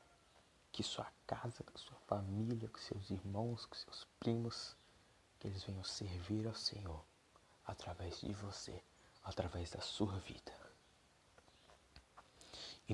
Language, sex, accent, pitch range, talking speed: Portuguese, male, Brazilian, 105-120 Hz, 120 wpm